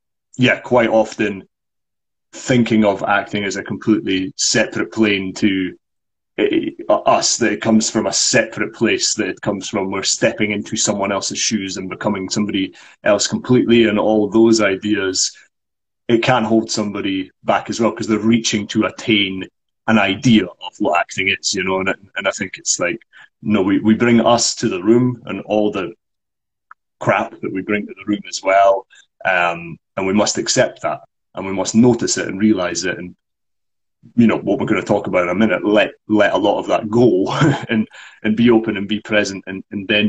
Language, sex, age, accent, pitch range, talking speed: English, male, 30-49, British, 100-120 Hz, 200 wpm